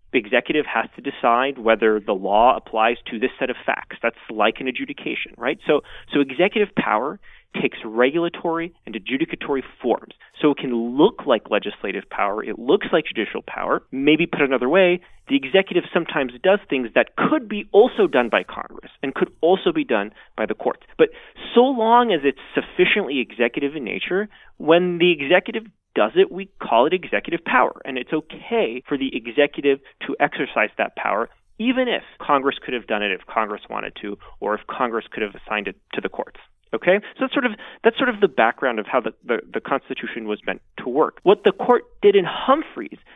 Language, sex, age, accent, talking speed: English, male, 30-49, American, 190 wpm